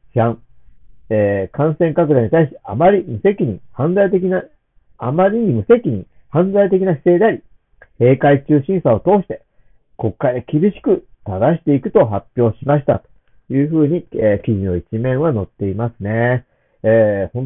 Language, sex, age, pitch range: Japanese, male, 50-69, 105-150 Hz